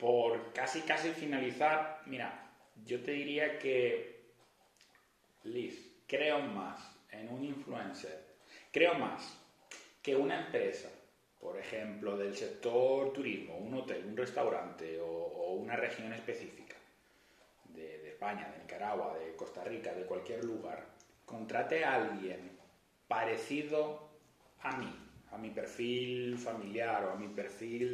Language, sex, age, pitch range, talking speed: Spanish, male, 30-49, 115-185 Hz, 125 wpm